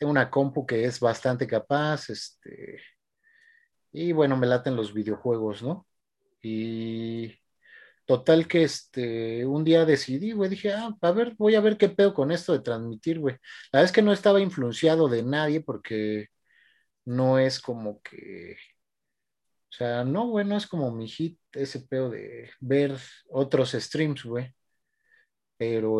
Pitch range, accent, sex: 120-165 Hz, Mexican, male